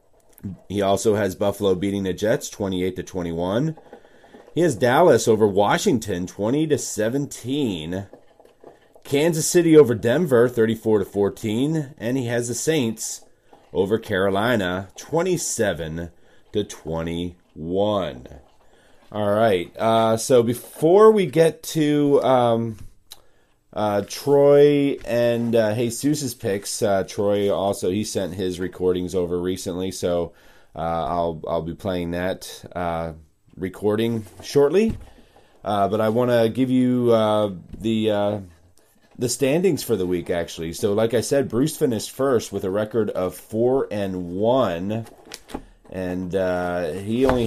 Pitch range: 90-120 Hz